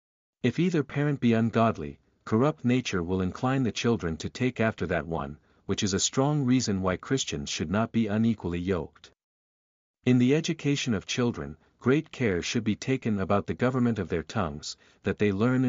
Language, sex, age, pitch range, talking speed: English, male, 50-69, 95-125 Hz, 180 wpm